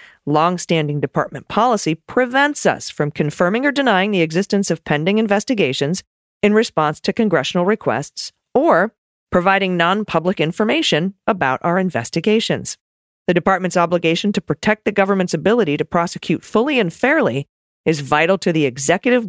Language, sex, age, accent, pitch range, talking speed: English, female, 40-59, American, 155-205 Hz, 140 wpm